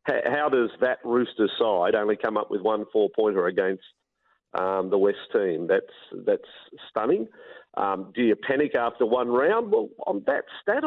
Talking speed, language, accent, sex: 165 wpm, English, Australian, male